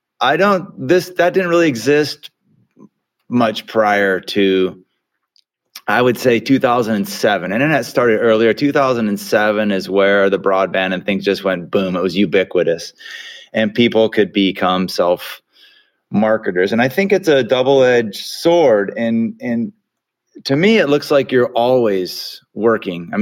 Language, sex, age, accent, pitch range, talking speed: English, male, 30-49, American, 105-155 Hz, 145 wpm